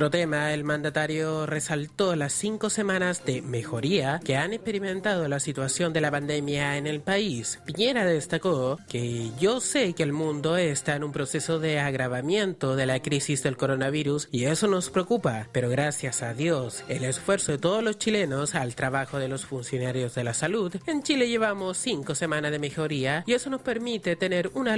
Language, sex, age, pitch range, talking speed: Spanish, male, 30-49, 140-175 Hz, 180 wpm